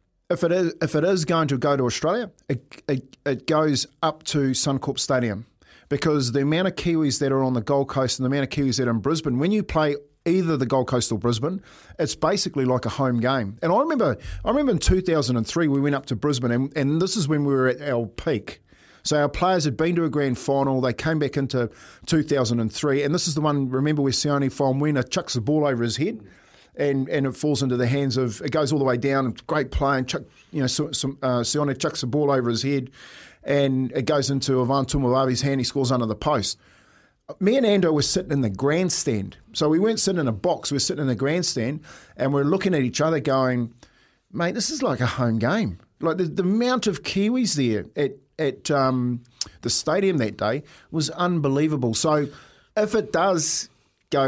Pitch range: 130-155 Hz